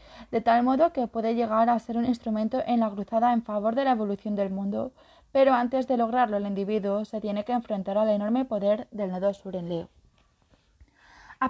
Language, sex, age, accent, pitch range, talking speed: Spanish, female, 20-39, Spanish, 215-255 Hz, 205 wpm